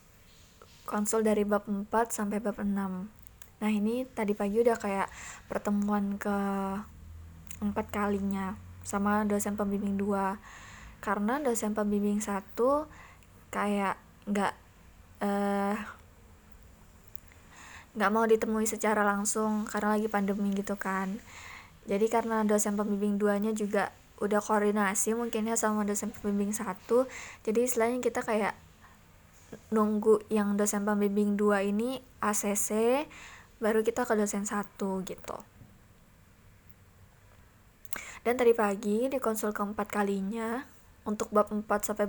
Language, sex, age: Indonesian, female, 20-39